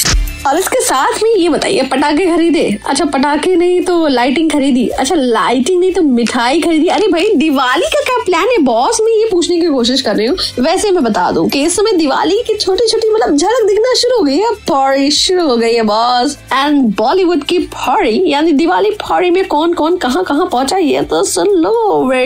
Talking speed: 195 wpm